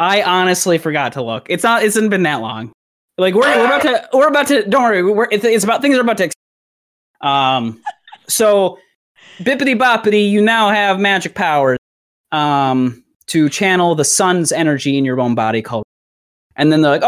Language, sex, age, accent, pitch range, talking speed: English, male, 20-39, American, 130-195 Hz, 190 wpm